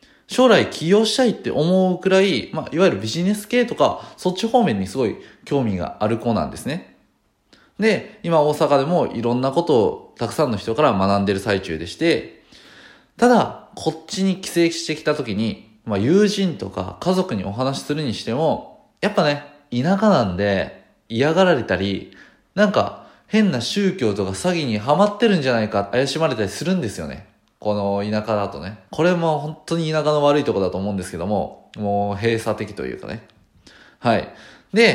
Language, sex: Japanese, male